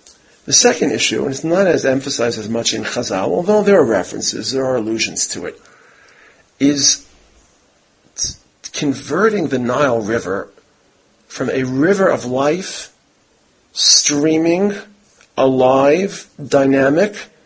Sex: male